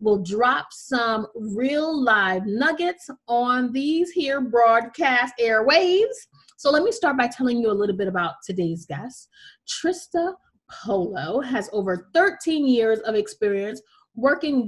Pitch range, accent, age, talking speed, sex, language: 215-295 Hz, American, 30-49, 135 wpm, female, English